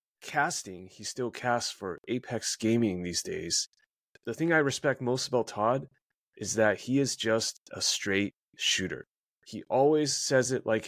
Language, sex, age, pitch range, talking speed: English, male, 30-49, 105-125 Hz, 160 wpm